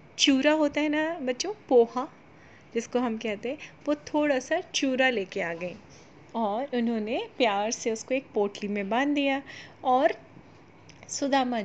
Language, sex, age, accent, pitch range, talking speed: Hindi, female, 30-49, native, 205-255 Hz, 150 wpm